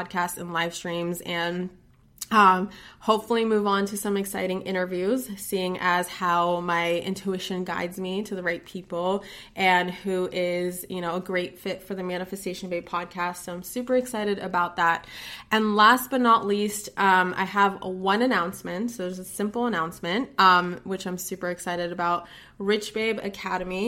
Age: 20-39